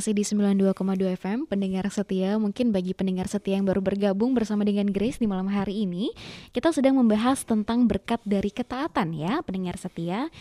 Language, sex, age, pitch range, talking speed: Indonesian, female, 20-39, 185-230 Hz, 165 wpm